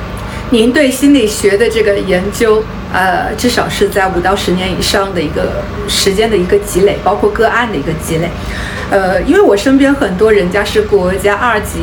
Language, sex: Chinese, female